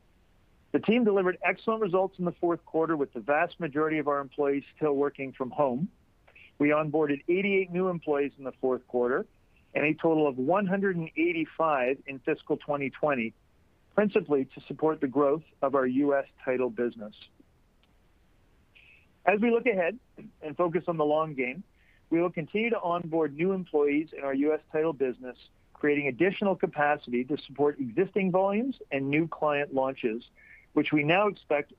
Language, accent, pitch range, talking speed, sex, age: English, American, 130-170 Hz, 160 wpm, male, 40-59